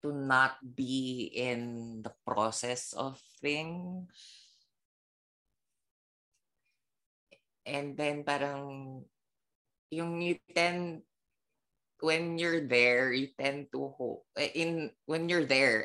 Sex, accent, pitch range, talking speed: female, Filipino, 115-145 Hz, 95 wpm